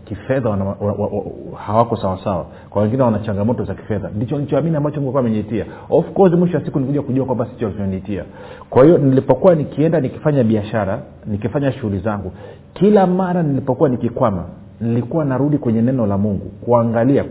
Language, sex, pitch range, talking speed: Swahili, male, 105-145 Hz, 165 wpm